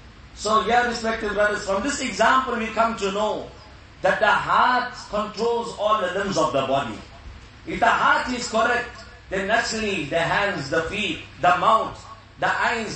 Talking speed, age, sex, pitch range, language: 165 wpm, 50-69, male, 180-240 Hz, English